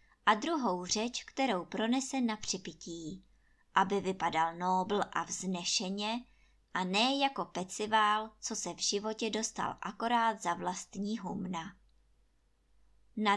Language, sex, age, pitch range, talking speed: Czech, male, 20-39, 185-235 Hz, 115 wpm